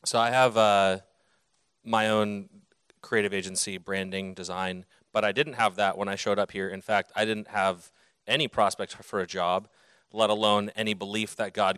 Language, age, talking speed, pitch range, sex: English, 30-49, 185 wpm, 95-110 Hz, male